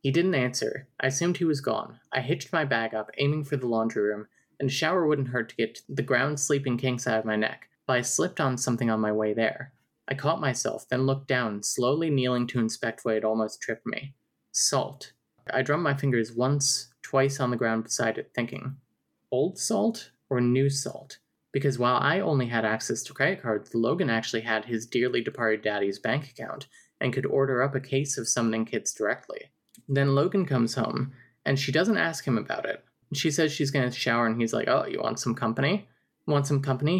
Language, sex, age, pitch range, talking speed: English, male, 20-39, 115-140 Hz, 210 wpm